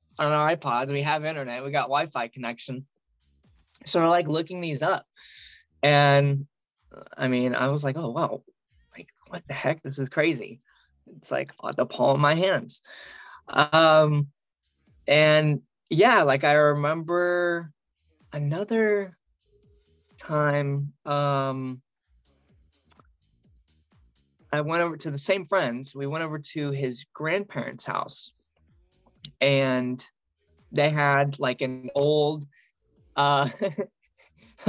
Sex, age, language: male, 20-39, English